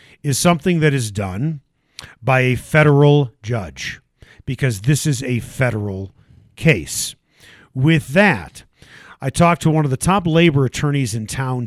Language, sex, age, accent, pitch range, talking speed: English, male, 50-69, American, 115-155 Hz, 145 wpm